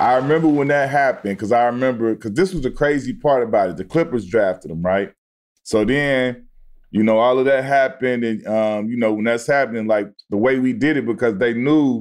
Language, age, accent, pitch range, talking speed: English, 20-39, American, 115-145 Hz, 225 wpm